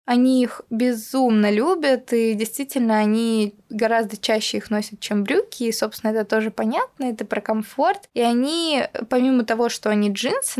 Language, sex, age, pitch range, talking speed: Russian, female, 20-39, 220-265 Hz, 160 wpm